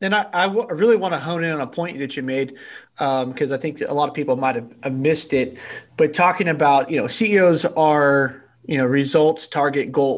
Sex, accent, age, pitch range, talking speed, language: male, American, 30-49, 140-165 Hz, 225 wpm, English